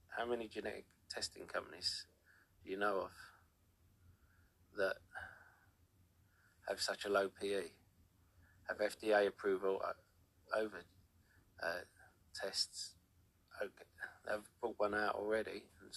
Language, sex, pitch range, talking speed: English, male, 90-100 Hz, 100 wpm